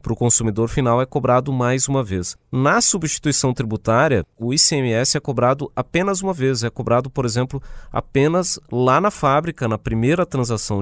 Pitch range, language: 115-155 Hz, Portuguese